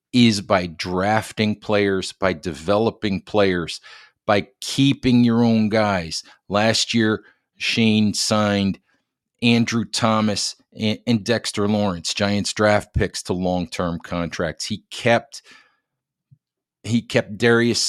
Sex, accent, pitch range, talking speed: male, American, 100-115 Hz, 105 wpm